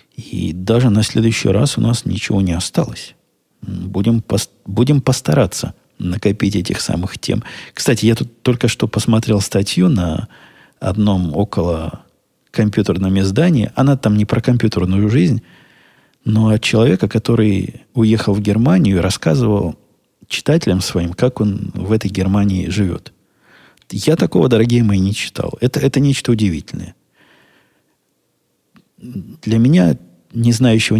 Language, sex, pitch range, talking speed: Russian, male, 95-115 Hz, 125 wpm